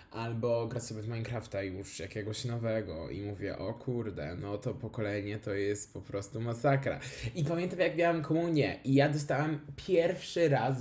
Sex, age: male, 20-39